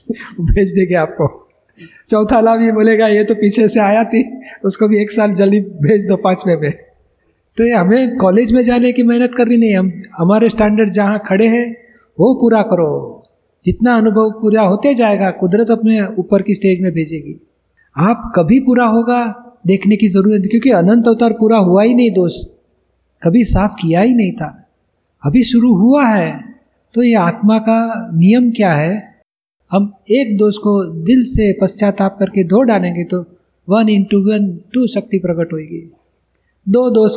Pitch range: 190-230 Hz